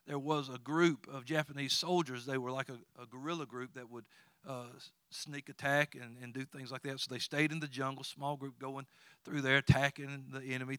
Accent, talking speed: American, 215 wpm